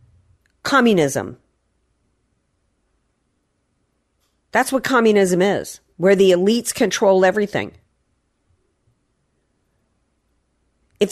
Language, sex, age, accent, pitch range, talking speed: English, female, 50-69, American, 160-200 Hz, 60 wpm